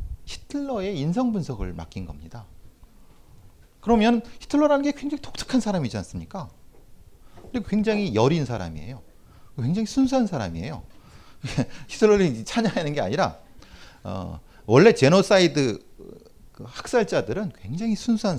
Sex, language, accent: male, Korean, native